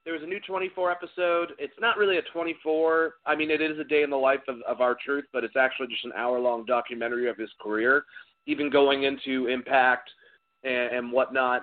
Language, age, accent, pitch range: English, 30-49, American, 130-185 Hz